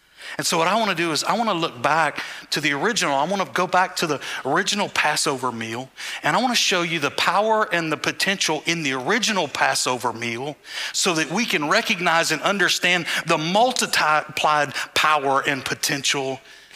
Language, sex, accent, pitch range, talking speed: English, male, American, 150-190 Hz, 195 wpm